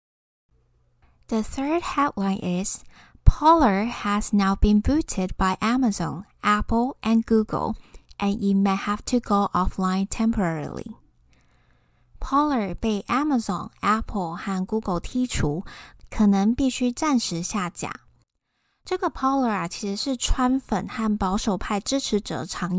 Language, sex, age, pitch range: Chinese, female, 20-39, 190-250 Hz